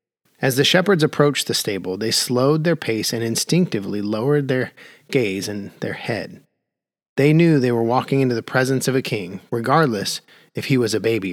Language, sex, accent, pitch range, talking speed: English, male, American, 115-155 Hz, 185 wpm